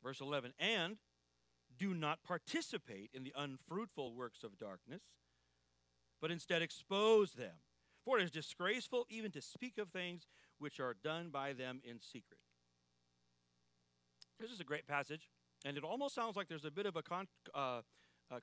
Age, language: 40-59, English